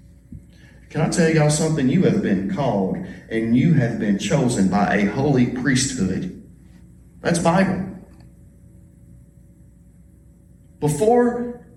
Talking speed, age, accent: 105 wpm, 40-59, American